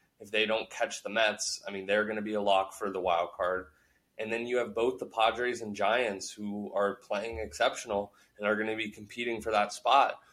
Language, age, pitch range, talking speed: English, 20-39, 100-125 Hz, 230 wpm